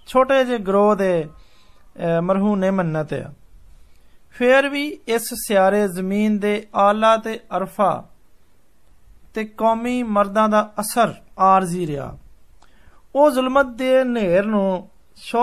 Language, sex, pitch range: Hindi, male, 185-230 Hz